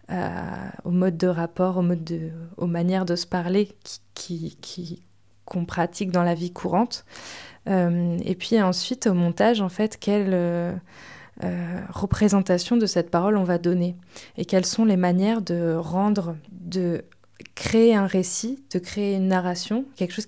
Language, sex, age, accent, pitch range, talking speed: French, female, 20-39, French, 180-210 Hz, 170 wpm